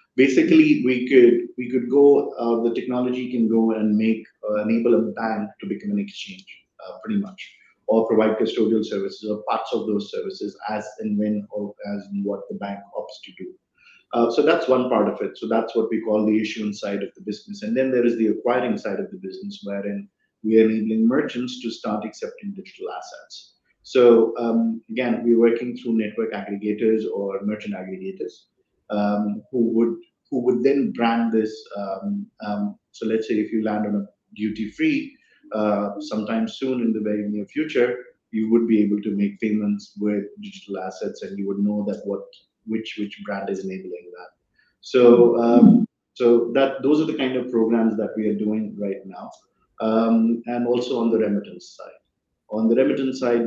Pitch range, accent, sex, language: 105-125 Hz, Indian, male, English